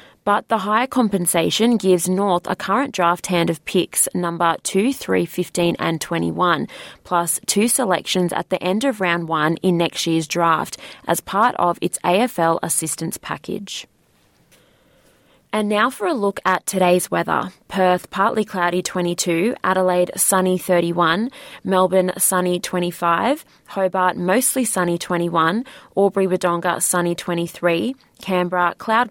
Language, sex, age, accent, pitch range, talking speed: English, female, 20-39, Australian, 175-205 Hz, 135 wpm